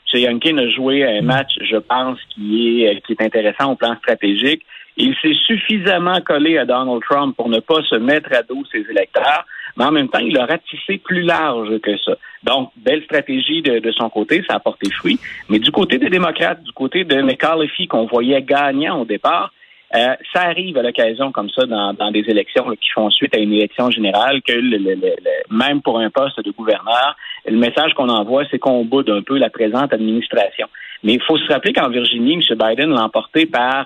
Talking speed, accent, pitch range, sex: 215 wpm, Canadian, 110-165 Hz, male